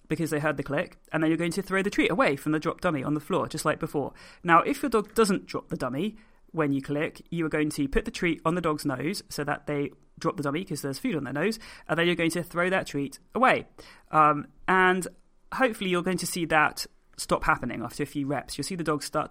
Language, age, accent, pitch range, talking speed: English, 30-49, British, 150-180 Hz, 265 wpm